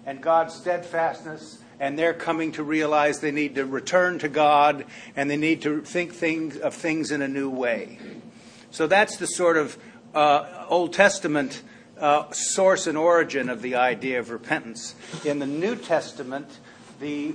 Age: 60-79